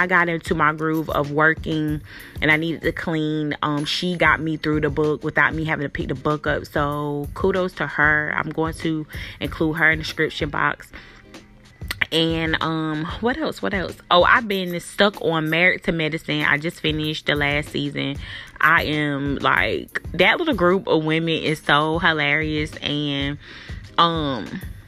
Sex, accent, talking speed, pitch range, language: female, American, 175 wpm, 145-170 Hz, English